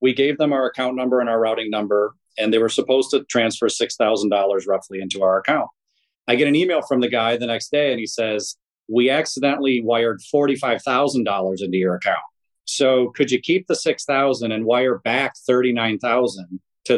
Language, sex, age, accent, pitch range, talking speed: English, male, 40-59, American, 110-130 Hz, 185 wpm